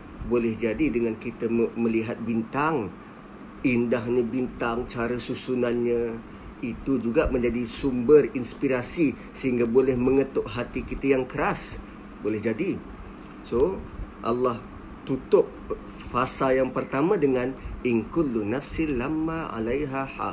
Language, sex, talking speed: Malay, male, 95 wpm